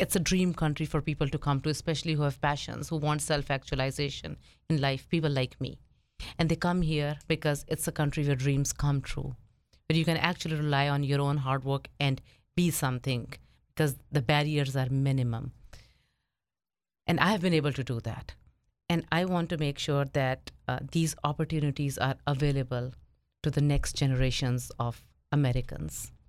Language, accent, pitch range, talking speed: English, Indian, 135-160 Hz, 175 wpm